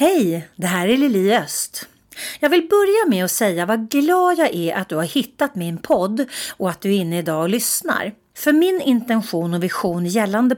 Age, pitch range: 40-59, 175-260 Hz